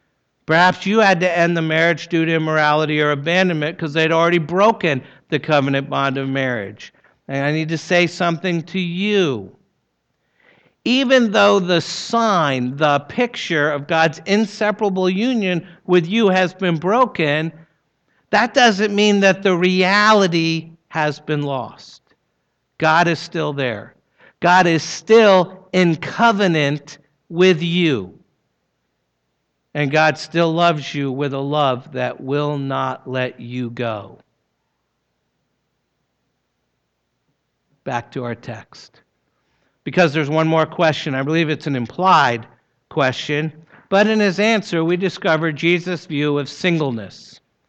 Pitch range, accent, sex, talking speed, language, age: 145-185 Hz, American, male, 130 wpm, English, 60-79